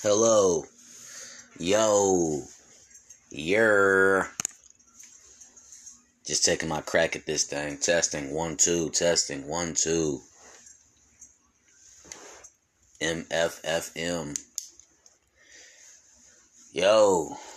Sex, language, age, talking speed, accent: male, English, 30-49, 60 wpm, American